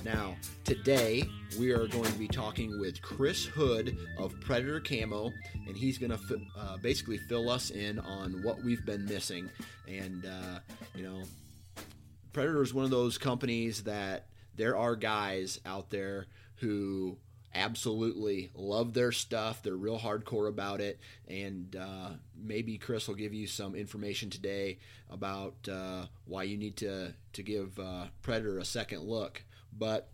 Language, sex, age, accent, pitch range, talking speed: English, male, 30-49, American, 95-115 Hz, 155 wpm